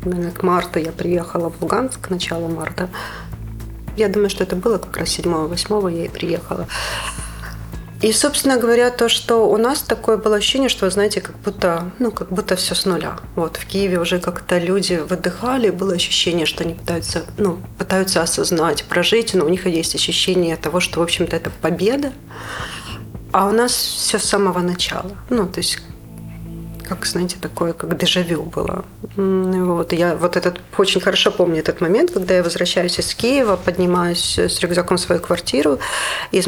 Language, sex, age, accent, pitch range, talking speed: Russian, female, 40-59, native, 170-205 Hz, 175 wpm